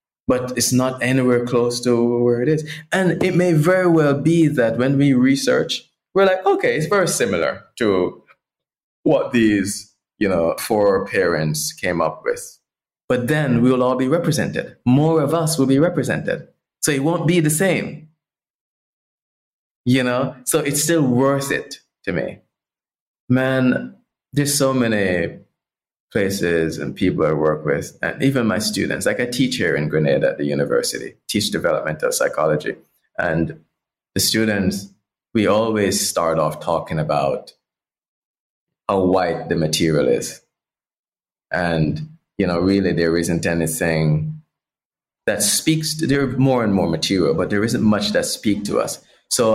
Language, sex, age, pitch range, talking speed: English, male, 20-39, 100-160 Hz, 155 wpm